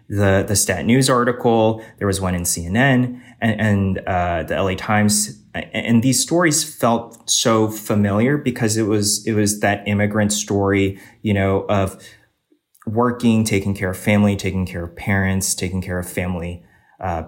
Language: English